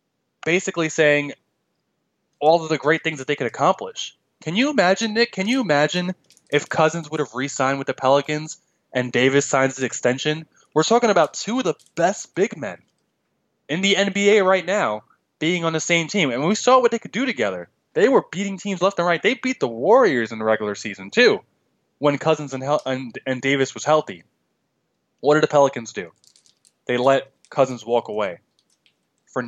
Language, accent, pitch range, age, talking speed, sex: English, American, 125-170 Hz, 20-39, 185 wpm, male